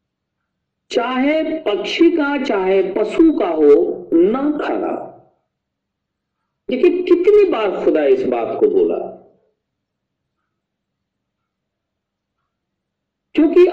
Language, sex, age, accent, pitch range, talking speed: Hindi, male, 50-69, native, 310-390 Hz, 80 wpm